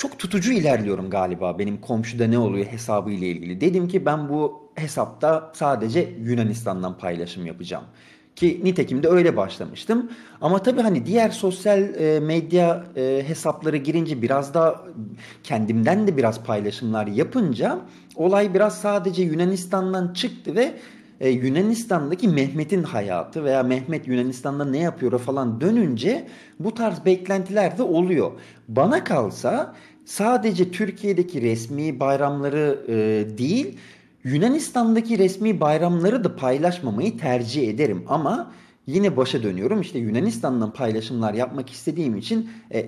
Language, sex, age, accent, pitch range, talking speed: Turkish, male, 40-59, native, 120-195 Hz, 120 wpm